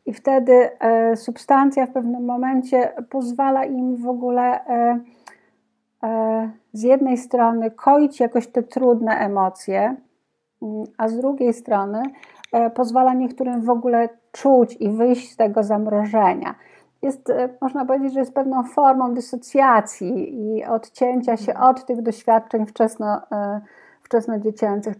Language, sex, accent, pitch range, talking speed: Polish, female, native, 220-260 Hz, 110 wpm